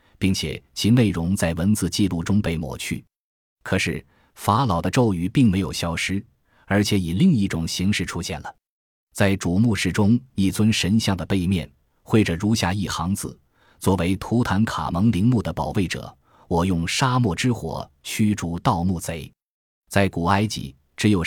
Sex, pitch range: male, 85-110 Hz